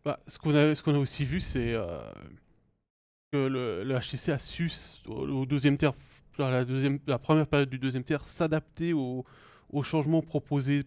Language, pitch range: French, 120-145 Hz